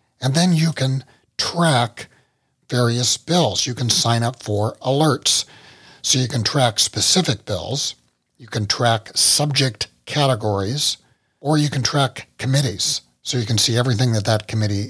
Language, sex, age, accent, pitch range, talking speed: English, male, 60-79, American, 110-135 Hz, 150 wpm